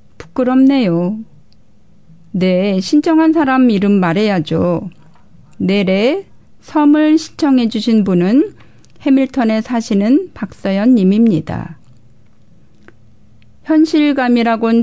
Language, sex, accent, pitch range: Korean, female, native, 195-255 Hz